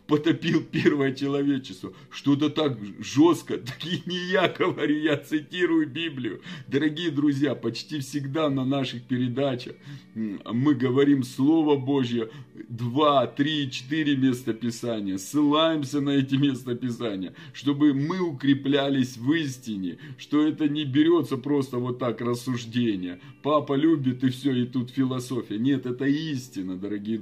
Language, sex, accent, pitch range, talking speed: Russian, male, native, 125-155 Hz, 130 wpm